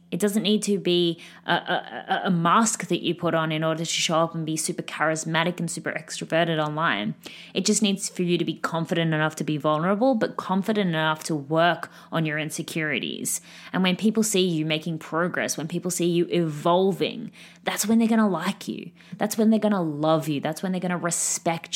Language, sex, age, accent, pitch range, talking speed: English, female, 20-39, Australian, 155-185 Hz, 210 wpm